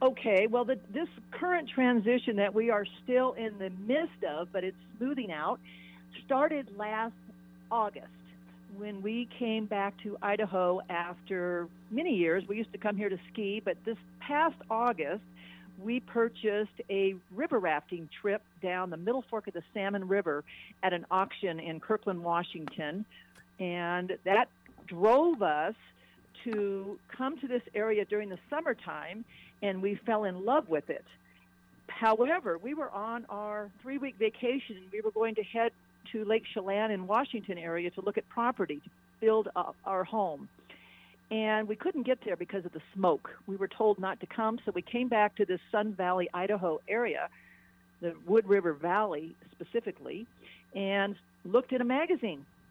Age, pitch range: 50-69, 185-230 Hz